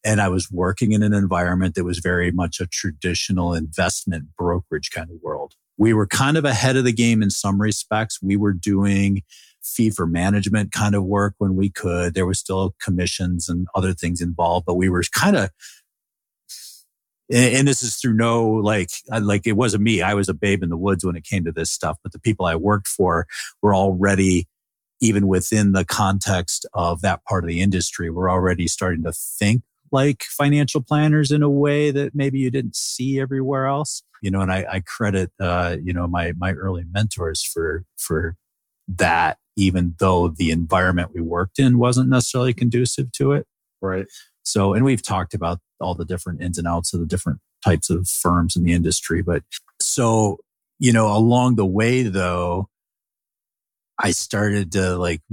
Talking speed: 190 wpm